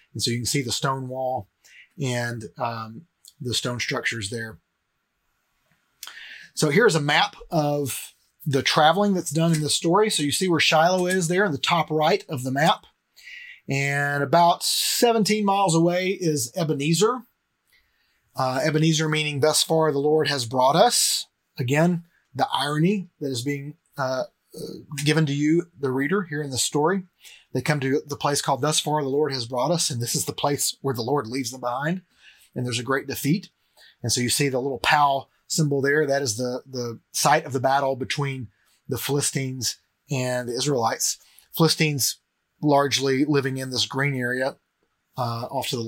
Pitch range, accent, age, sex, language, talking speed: 130-165 Hz, American, 30-49, male, English, 180 wpm